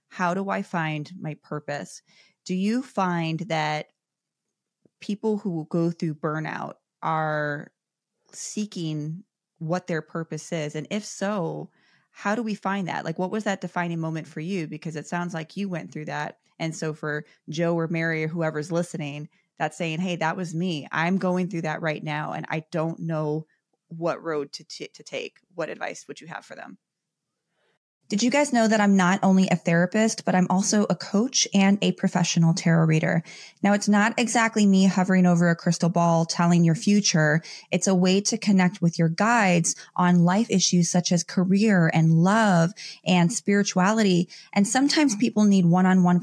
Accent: American